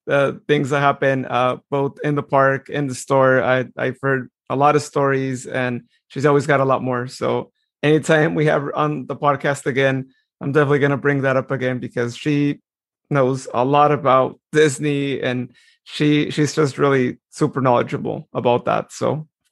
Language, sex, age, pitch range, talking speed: English, male, 30-49, 130-145 Hz, 180 wpm